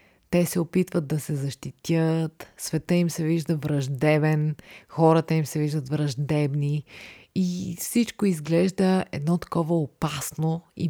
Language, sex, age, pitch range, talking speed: Bulgarian, female, 20-39, 155-190 Hz, 125 wpm